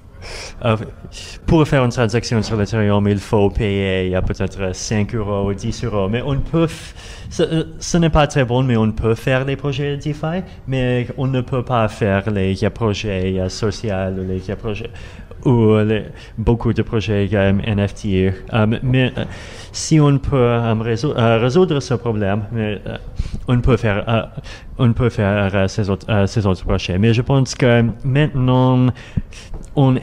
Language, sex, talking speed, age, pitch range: French, male, 180 wpm, 30-49, 100-120 Hz